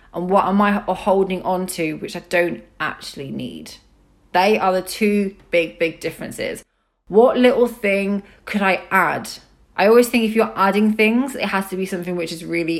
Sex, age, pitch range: female, 20-39, 175-210 Hz